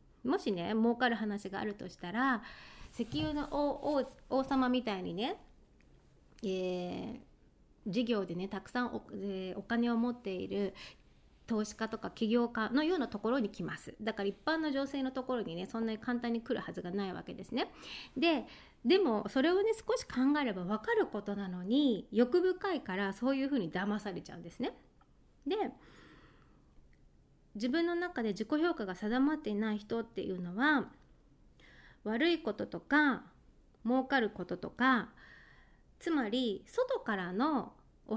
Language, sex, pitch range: Japanese, female, 210-295 Hz